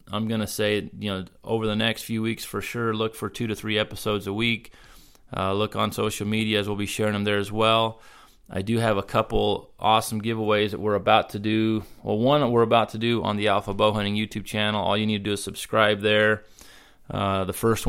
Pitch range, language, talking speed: 100-110 Hz, English, 240 wpm